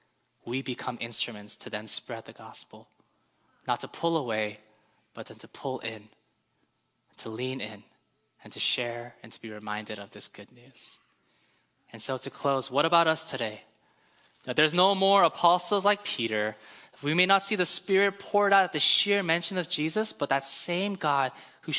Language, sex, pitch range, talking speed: English, male, 120-170 Hz, 180 wpm